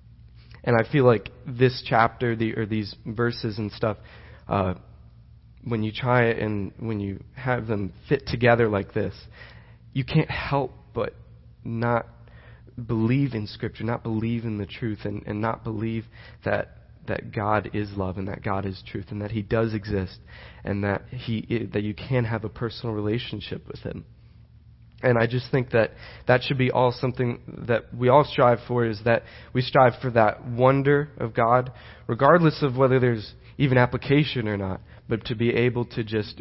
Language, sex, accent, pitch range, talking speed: English, male, American, 105-125 Hz, 180 wpm